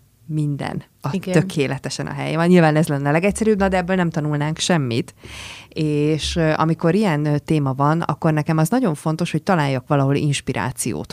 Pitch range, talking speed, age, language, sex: 140-175 Hz, 155 wpm, 30-49, Hungarian, female